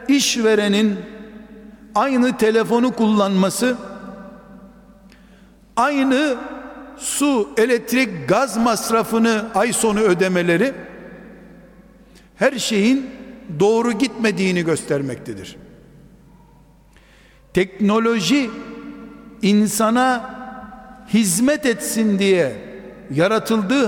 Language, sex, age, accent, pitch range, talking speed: Turkish, male, 60-79, native, 190-245 Hz, 60 wpm